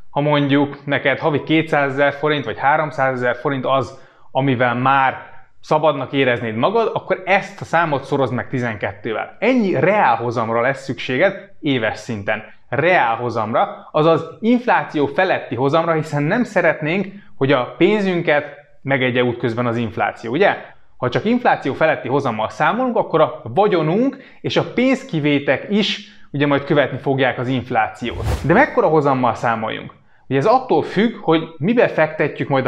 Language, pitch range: Hungarian, 130-170 Hz